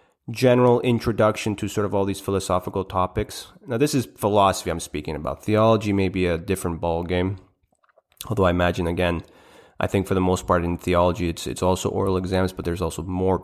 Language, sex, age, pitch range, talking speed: English, male, 30-49, 90-105 Hz, 195 wpm